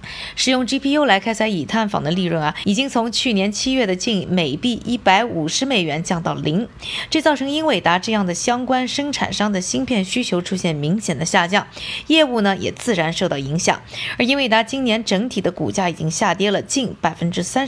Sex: female